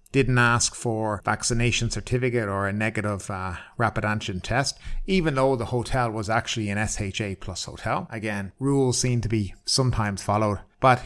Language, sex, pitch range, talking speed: English, male, 105-125 Hz, 165 wpm